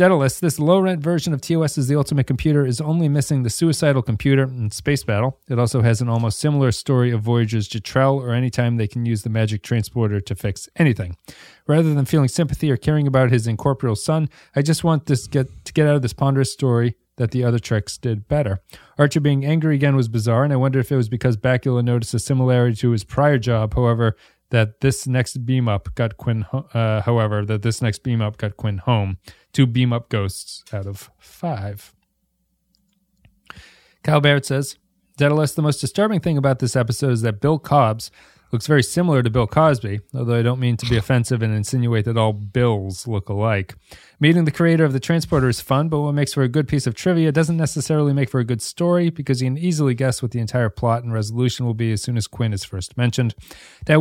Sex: male